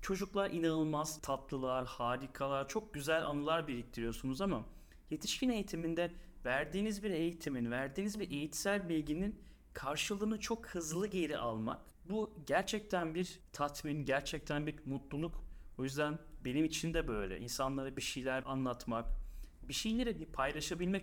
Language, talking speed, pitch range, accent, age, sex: Turkish, 125 wpm, 130-170 Hz, native, 30-49, male